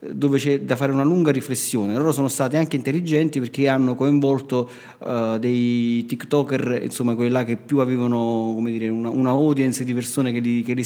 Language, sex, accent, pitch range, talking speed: Italian, male, native, 120-145 Hz, 195 wpm